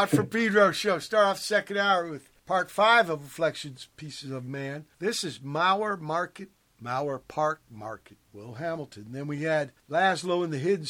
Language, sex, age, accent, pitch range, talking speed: English, male, 60-79, American, 130-175 Hz, 180 wpm